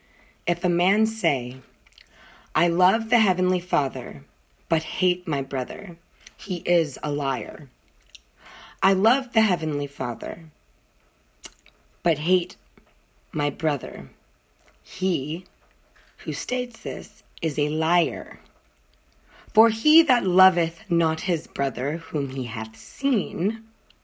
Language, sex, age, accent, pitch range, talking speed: English, female, 30-49, American, 150-205 Hz, 110 wpm